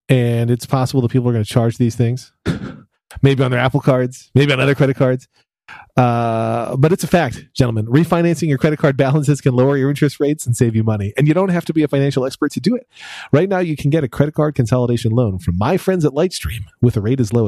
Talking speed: 250 wpm